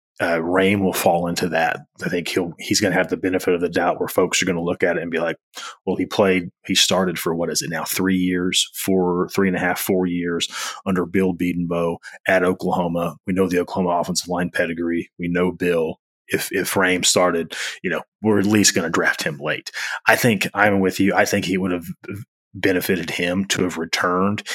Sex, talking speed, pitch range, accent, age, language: male, 220 wpm, 85-100 Hz, American, 30-49, English